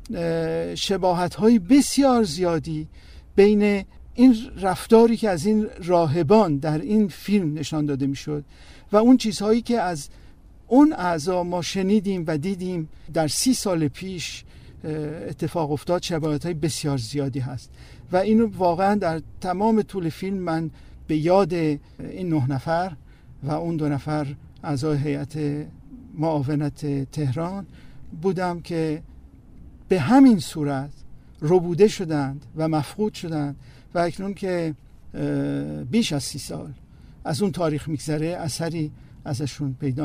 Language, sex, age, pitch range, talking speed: Persian, male, 50-69, 145-190 Hz, 125 wpm